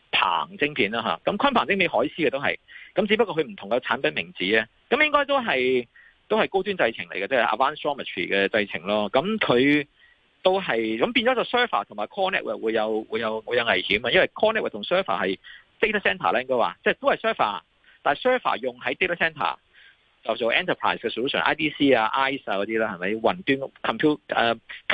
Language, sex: Chinese, male